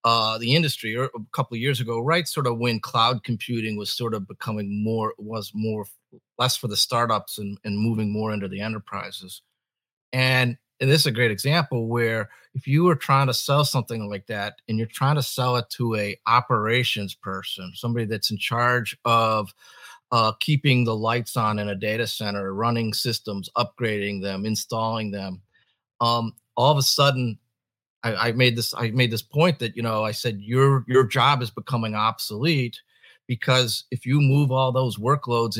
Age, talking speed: 40-59, 185 wpm